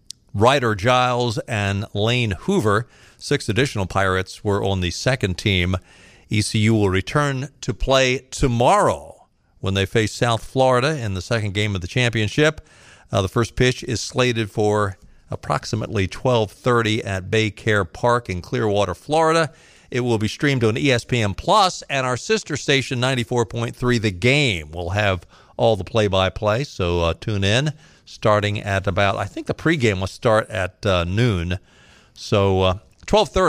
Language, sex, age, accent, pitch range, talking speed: English, male, 50-69, American, 95-130 Hz, 150 wpm